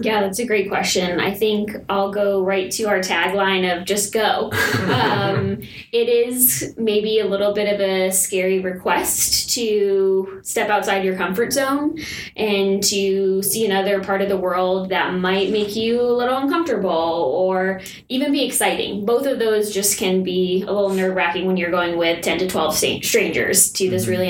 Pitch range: 185-220 Hz